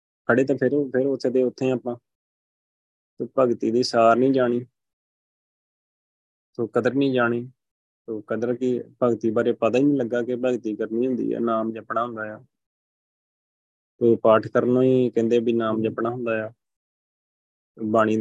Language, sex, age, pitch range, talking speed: Punjabi, male, 20-39, 110-120 Hz, 160 wpm